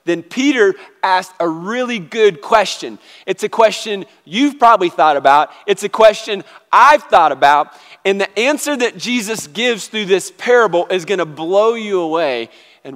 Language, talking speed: English, 160 wpm